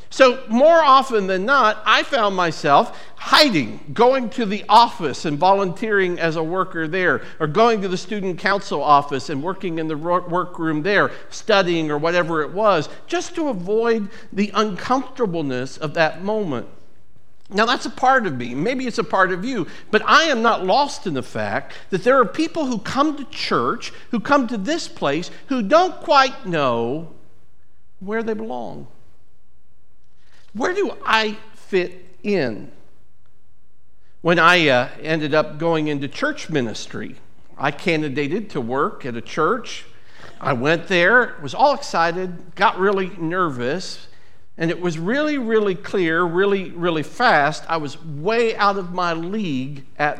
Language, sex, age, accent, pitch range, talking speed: English, male, 50-69, American, 165-235 Hz, 160 wpm